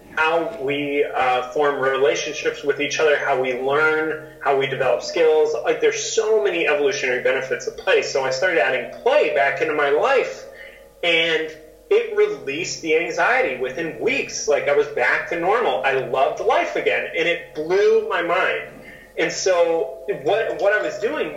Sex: male